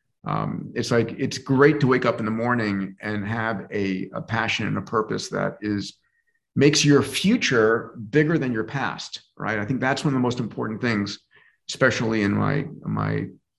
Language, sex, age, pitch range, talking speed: English, male, 40-59, 110-140 Hz, 185 wpm